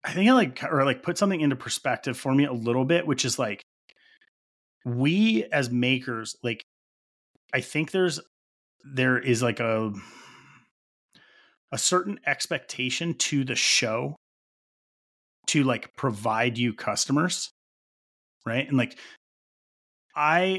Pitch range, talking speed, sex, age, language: 115-145 Hz, 130 wpm, male, 30-49, English